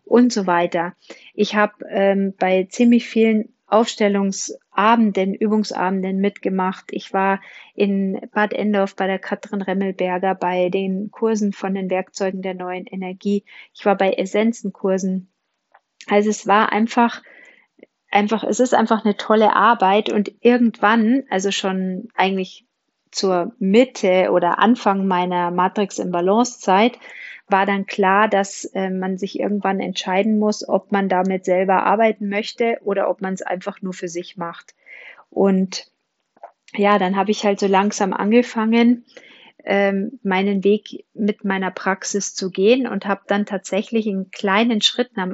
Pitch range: 190-220 Hz